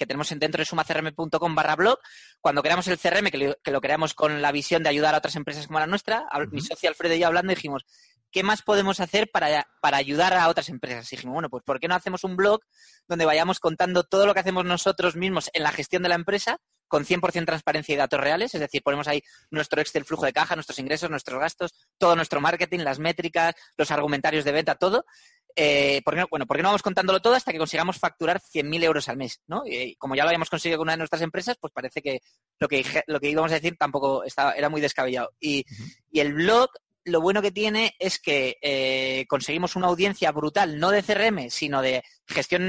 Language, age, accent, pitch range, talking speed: Spanish, 20-39, Spanish, 150-185 Hz, 225 wpm